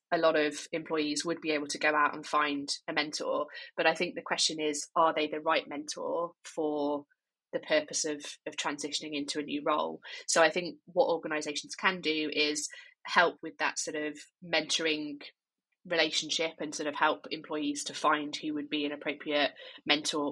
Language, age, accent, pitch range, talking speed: English, 20-39, British, 150-165 Hz, 185 wpm